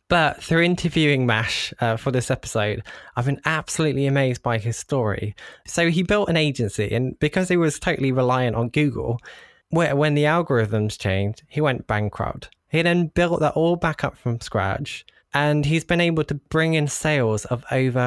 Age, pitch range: 20-39, 115-150 Hz